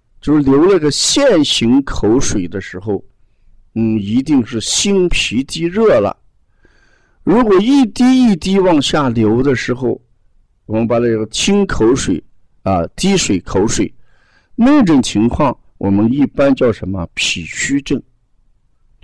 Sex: male